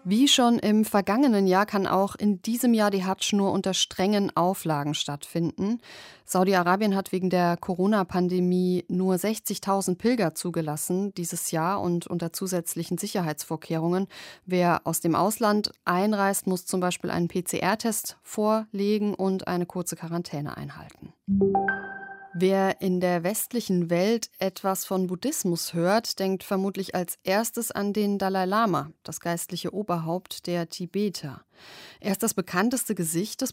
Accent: German